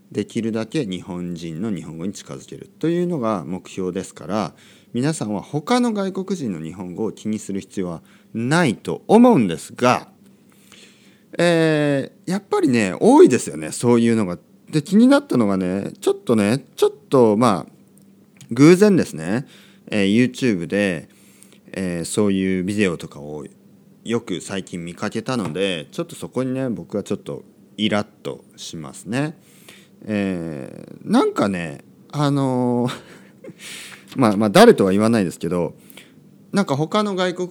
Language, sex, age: Japanese, male, 40-59